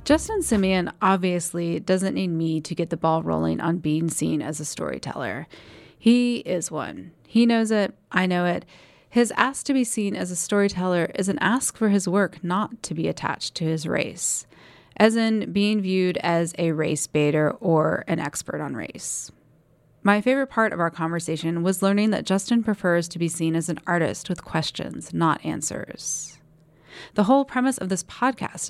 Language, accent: English, American